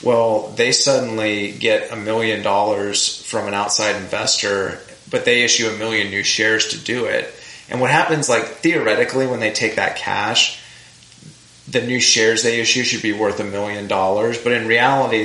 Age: 30-49